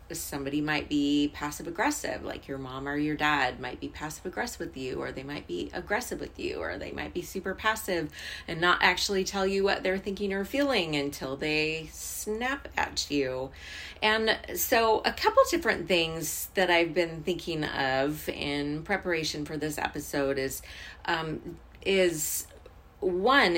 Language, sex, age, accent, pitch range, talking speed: English, female, 30-49, American, 140-195 Hz, 165 wpm